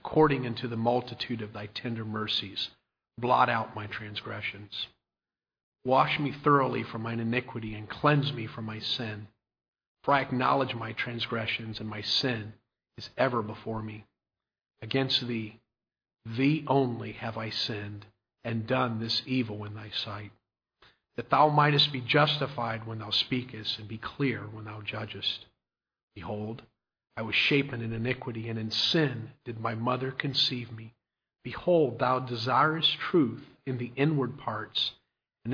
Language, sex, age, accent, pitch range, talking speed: English, male, 40-59, American, 110-135 Hz, 145 wpm